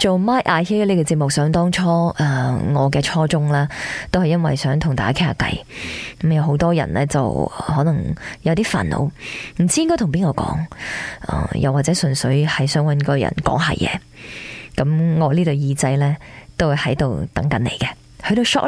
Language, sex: Chinese, female